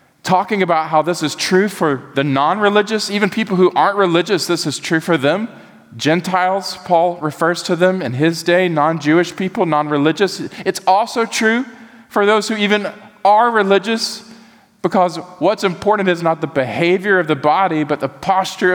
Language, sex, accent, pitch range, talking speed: English, male, American, 145-195 Hz, 165 wpm